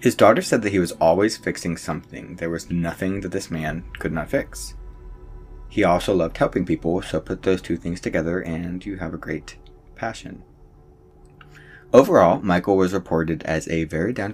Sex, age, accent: male, 20-39, American